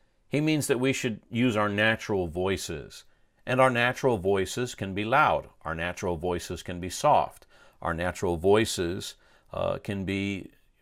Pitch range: 90-115 Hz